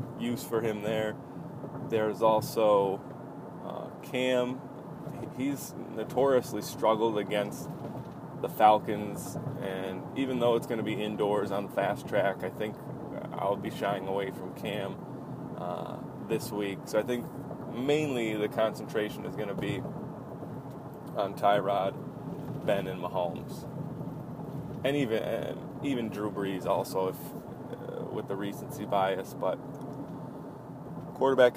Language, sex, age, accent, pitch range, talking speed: English, male, 20-39, American, 100-120 Hz, 125 wpm